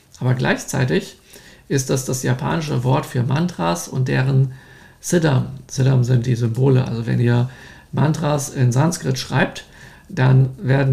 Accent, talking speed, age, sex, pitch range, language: German, 135 wpm, 50-69, male, 130-145 Hz, German